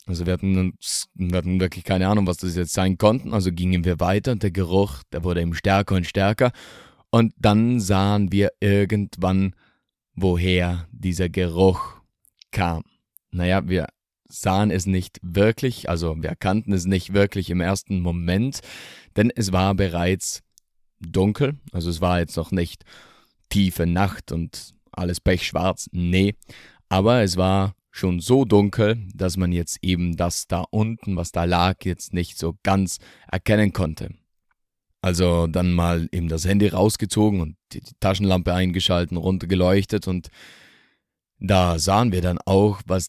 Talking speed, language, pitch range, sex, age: 150 wpm, German, 90-100 Hz, male, 30-49